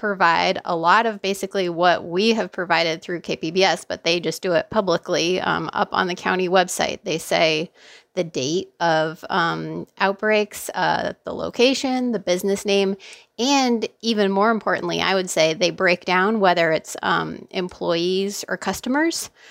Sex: female